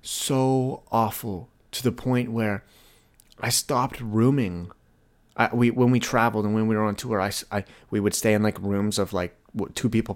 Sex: male